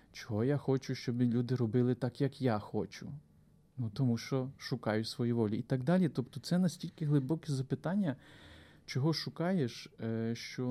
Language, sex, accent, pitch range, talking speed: Ukrainian, male, native, 115-140 Hz, 150 wpm